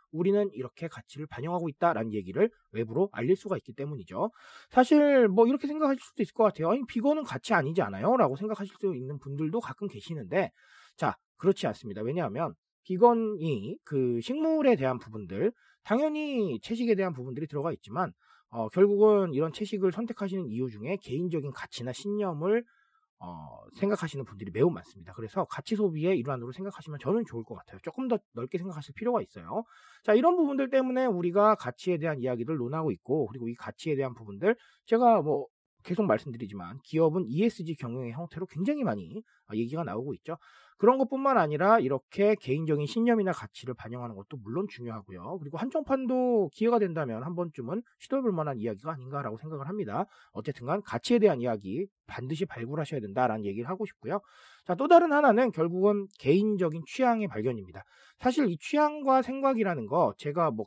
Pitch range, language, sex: 140-225 Hz, Korean, male